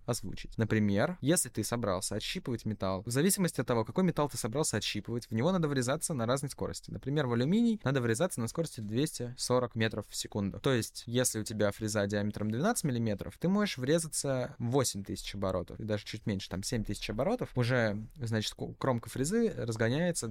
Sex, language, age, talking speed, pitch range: male, Russian, 20-39, 175 wpm, 105-140 Hz